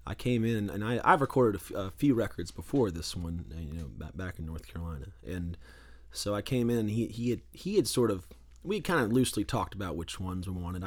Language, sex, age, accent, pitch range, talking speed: English, male, 30-49, American, 85-120 Hz, 230 wpm